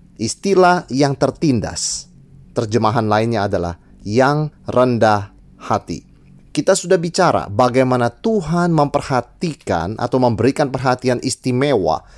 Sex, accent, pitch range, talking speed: male, native, 115-170 Hz, 95 wpm